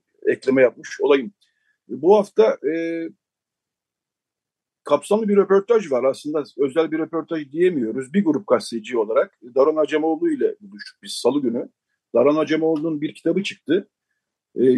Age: 50-69